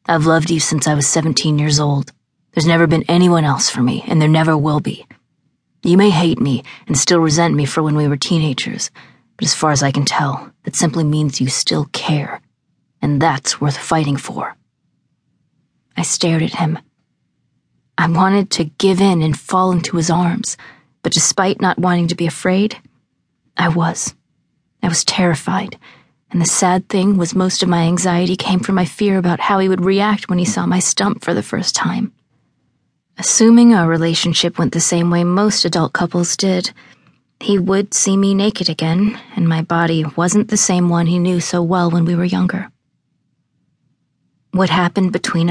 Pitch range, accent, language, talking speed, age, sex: 160-185 Hz, American, English, 185 wpm, 30-49, female